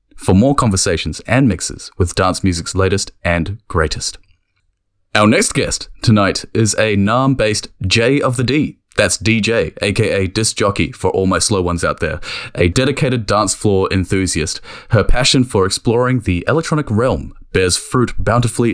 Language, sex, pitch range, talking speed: English, male, 90-120 Hz, 160 wpm